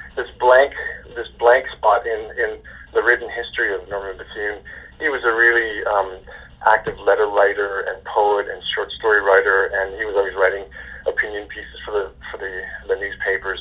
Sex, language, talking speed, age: male, English, 175 wpm, 40-59